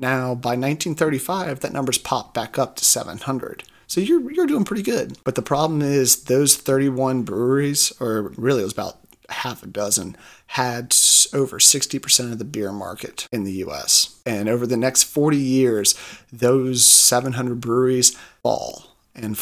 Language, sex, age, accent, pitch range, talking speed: English, male, 30-49, American, 115-140 Hz, 160 wpm